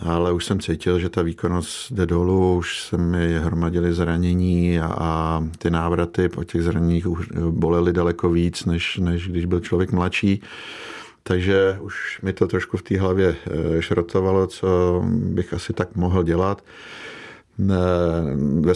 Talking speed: 145 wpm